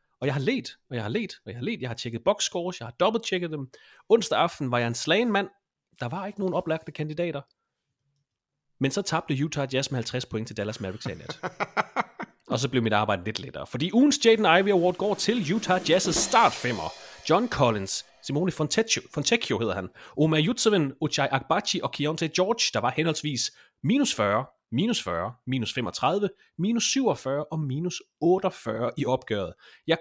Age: 30-49